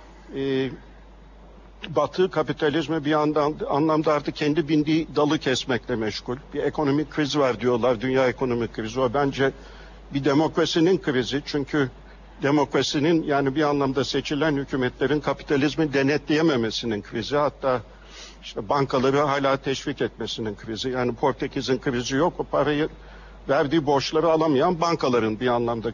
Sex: male